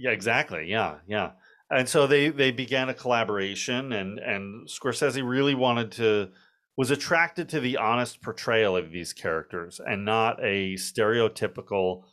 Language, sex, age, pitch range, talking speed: English, male, 30-49, 95-130 Hz, 150 wpm